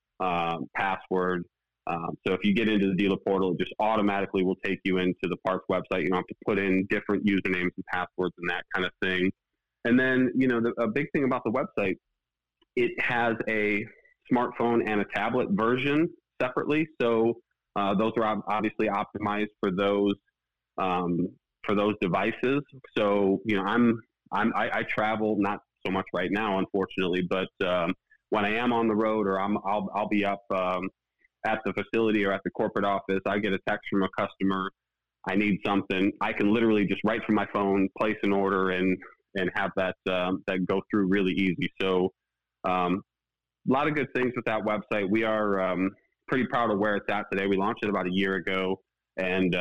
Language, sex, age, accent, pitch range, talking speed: English, male, 30-49, American, 95-105 Hz, 200 wpm